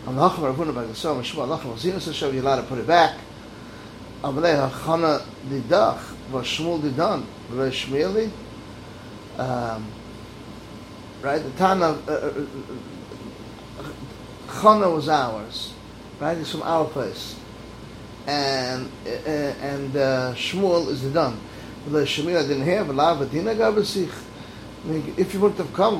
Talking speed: 85 wpm